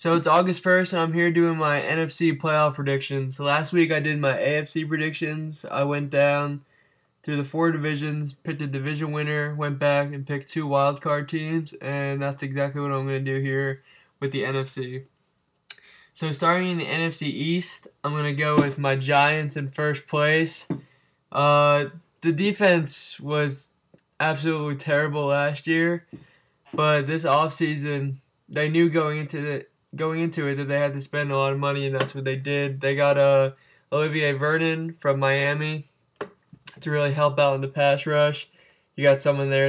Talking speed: 175 wpm